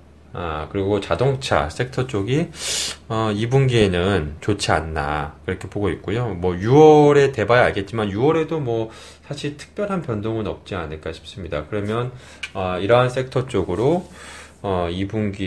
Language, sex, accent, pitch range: Korean, male, native, 85-120 Hz